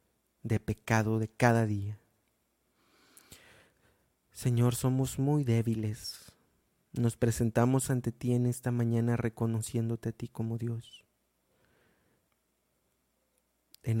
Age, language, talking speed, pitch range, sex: 30-49, Spanish, 95 wpm, 105-115 Hz, male